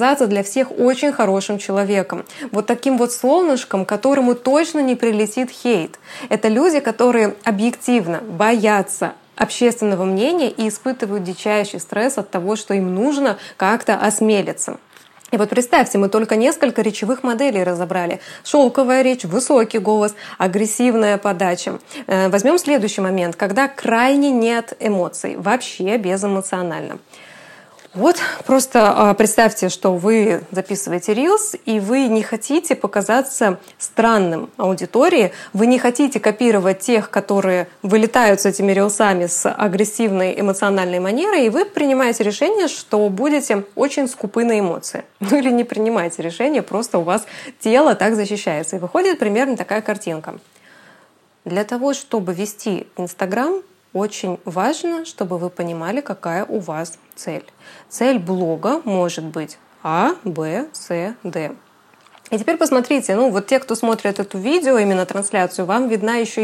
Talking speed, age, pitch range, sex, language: 135 wpm, 20-39, 195-255 Hz, female, Russian